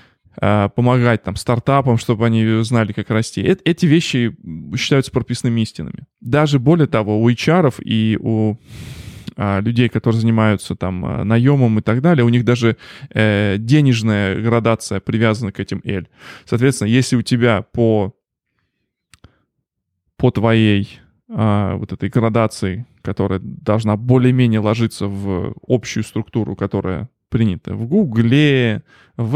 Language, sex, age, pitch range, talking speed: Russian, male, 20-39, 105-130 Hz, 125 wpm